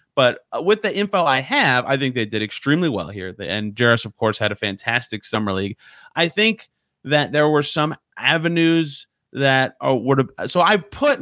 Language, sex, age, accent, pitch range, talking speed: English, male, 30-49, American, 125-170 Hz, 180 wpm